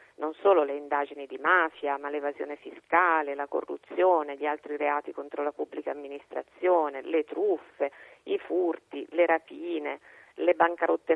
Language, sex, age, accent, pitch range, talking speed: Italian, female, 40-59, native, 150-225 Hz, 140 wpm